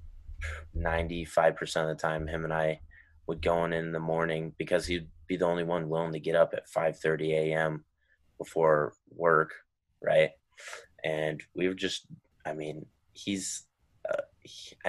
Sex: male